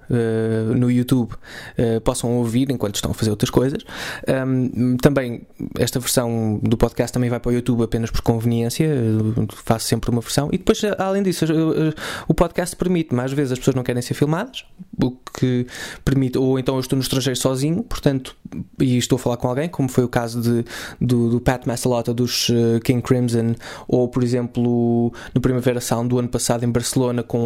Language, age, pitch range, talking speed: English, 20-39, 120-150 Hz, 195 wpm